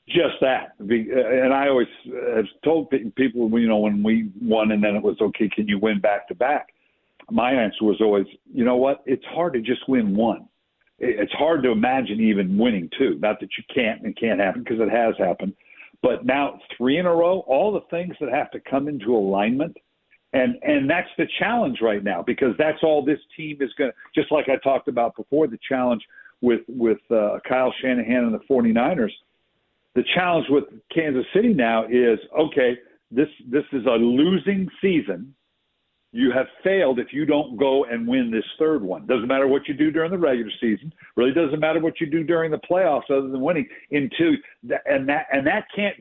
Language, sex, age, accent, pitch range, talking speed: English, male, 60-79, American, 125-165 Hz, 200 wpm